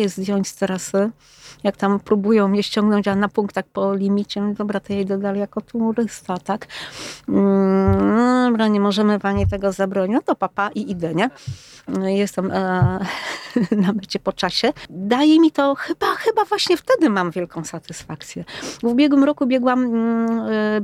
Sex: female